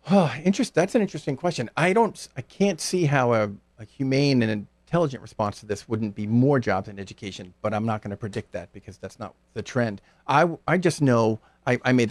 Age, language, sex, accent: 50-69, English, male, American